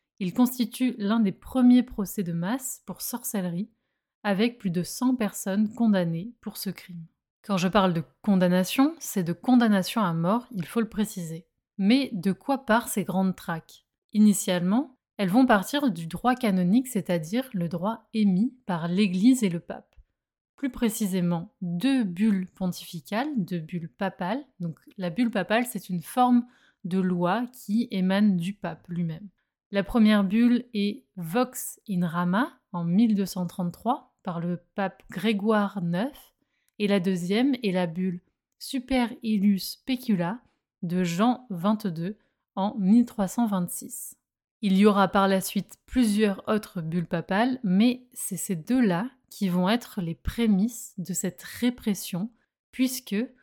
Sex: female